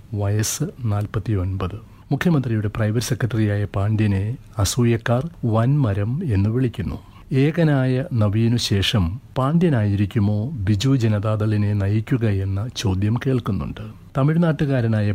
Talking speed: 85 wpm